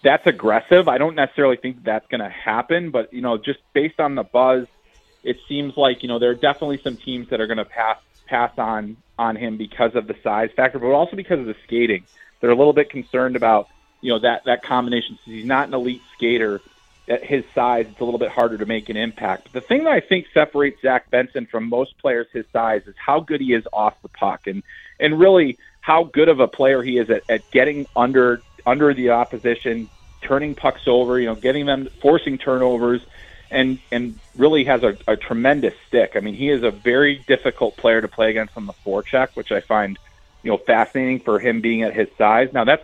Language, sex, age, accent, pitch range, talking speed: English, male, 30-49, American, 115-140 Hz, 225 wpm